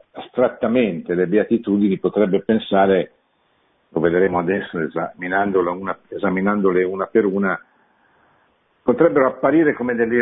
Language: Italian